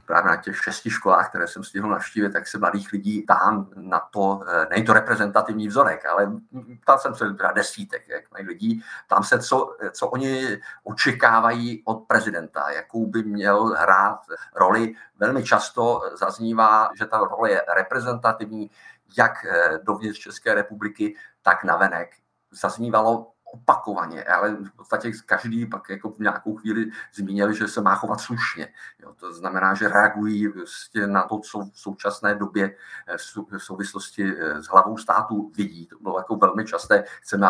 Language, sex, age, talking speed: Czech, male, 50-69, 155 wpm